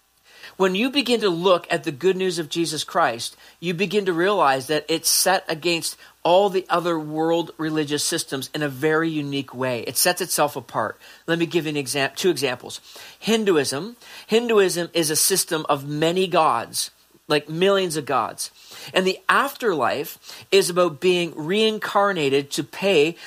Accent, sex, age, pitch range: American, male, 40-59, 150-190 Hz